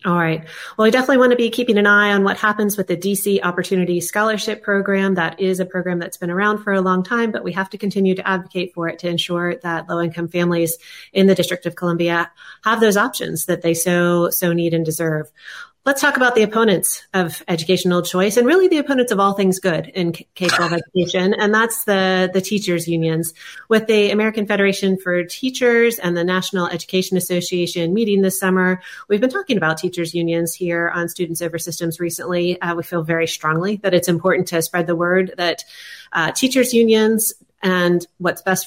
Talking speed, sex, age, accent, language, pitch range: 205 wpm, female, 30-49, American, English, 170-205 Hz